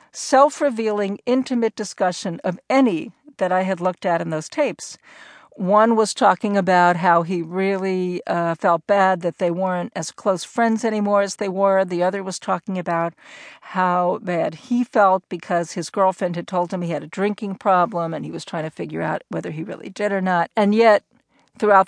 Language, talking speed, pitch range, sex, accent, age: English, 190 wpm, 180-220 Hz, female, American, 50-69